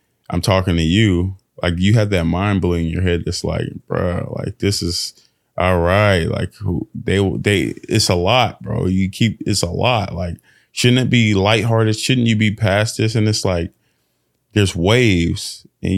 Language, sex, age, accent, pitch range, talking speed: English, male, 20-39, American, 90-110 Hz, 190 wpm